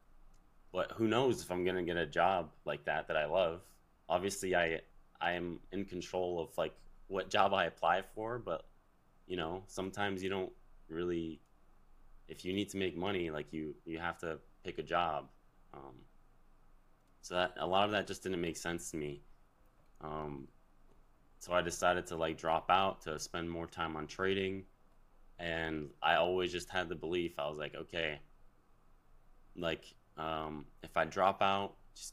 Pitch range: 80-95 Hz